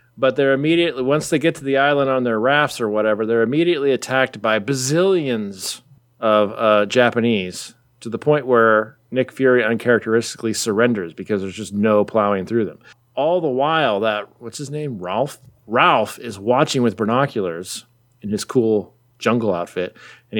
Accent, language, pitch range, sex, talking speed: American, English, 105-130 Hz, male, 165 wpm